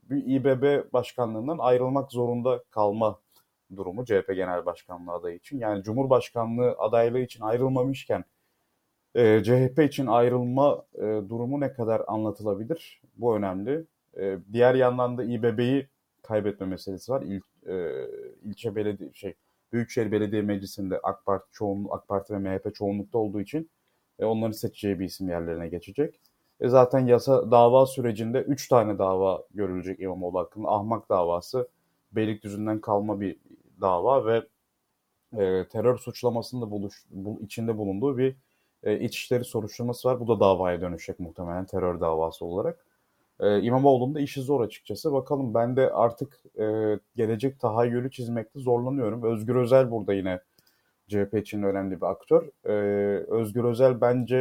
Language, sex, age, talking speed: Turkish, male, 30-49, 140 wpm